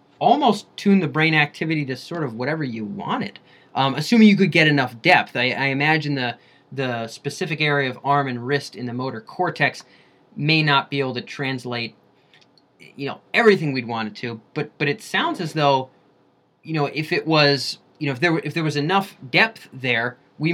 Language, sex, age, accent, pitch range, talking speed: English, male, 20-39, American, 130-160 Hz, 200 wpm